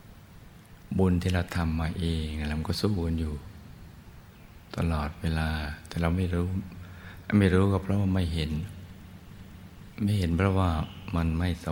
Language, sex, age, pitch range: Thai, male, 60-79, 80-90 Hz